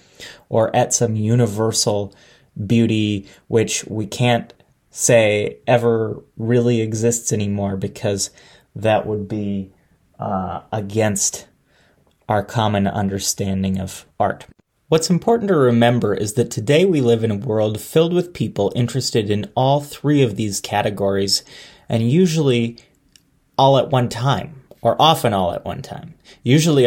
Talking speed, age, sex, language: 130 wpm, 30-49, male, English